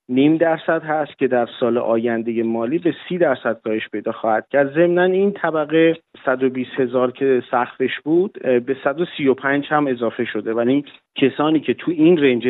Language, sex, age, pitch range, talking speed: Persian, male, 40-59, 120-155 Hz, 170 wpm